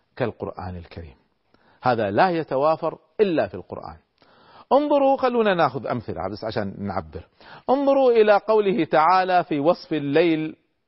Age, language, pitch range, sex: 40-59, Arabic, 120-195 Hz, male